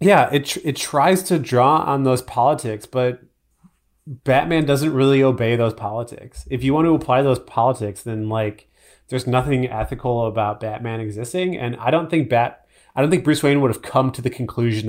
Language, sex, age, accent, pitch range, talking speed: English, male, 30-49, American, 110-130 Hz, 195 wpm